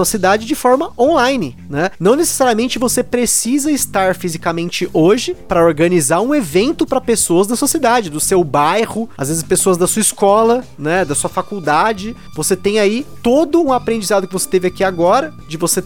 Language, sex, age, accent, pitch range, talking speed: Portuguese, male, 30-49, Brazilian, 170-235 Hz, 180 wpm